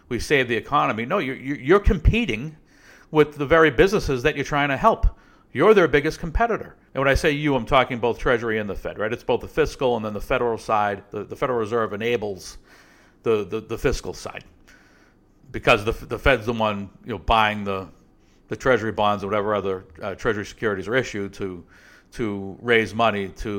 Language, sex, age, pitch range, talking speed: English, male, 50-69, 100-120 Hz, 200 wpm